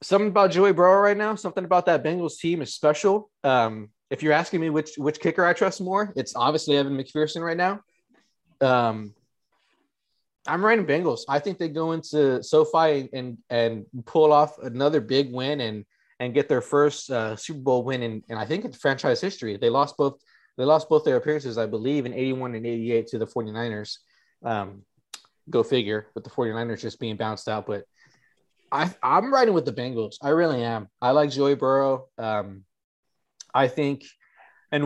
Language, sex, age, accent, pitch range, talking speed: English, male, 20-39, American, 120-160 Hz, 185 wpm